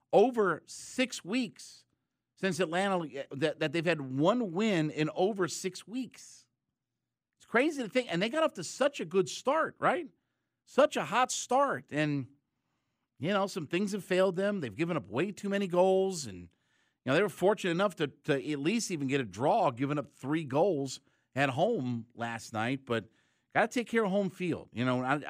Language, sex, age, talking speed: English, male, 50-69, 195 wpm